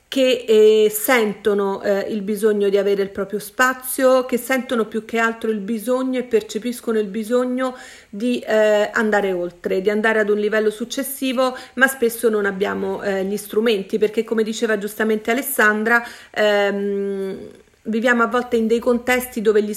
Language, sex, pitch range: Italian, female, 200-230 Hz